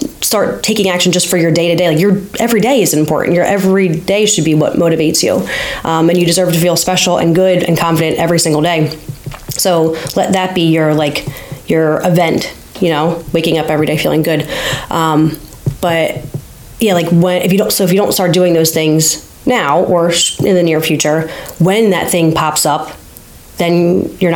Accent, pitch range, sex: American, 160-185 Hz, female